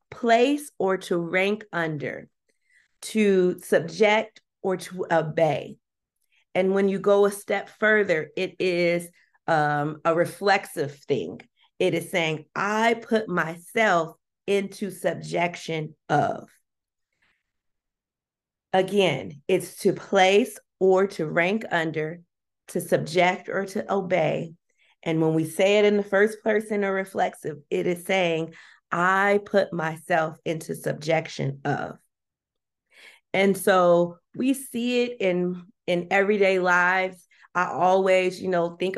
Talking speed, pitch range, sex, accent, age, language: 120 wpm, 165-195 Hz, female, American, 40-59, English